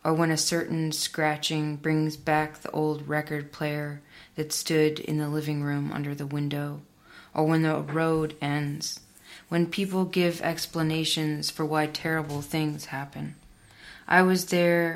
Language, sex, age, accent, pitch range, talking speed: English, female, 20-39, American, 150-165 Hz, 150 wpm